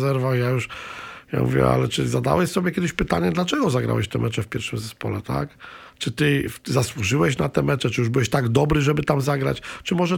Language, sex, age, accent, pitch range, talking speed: Polish, male, 50-69, native, 135-170 Hz, 205 wpm